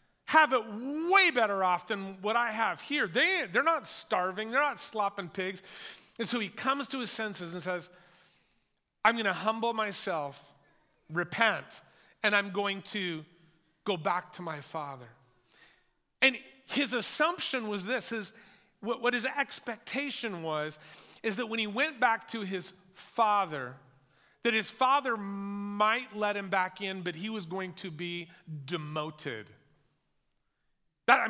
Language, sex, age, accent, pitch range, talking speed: English, male, 40-59, American, 160-220 Hz, 150 wpm